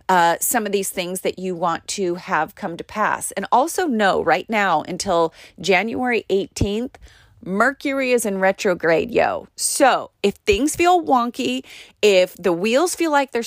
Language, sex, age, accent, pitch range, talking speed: English, female, 30-49, American, 175-250 Hz, 165 wpm